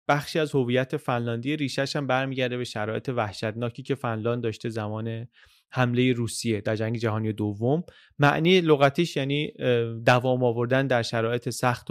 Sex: male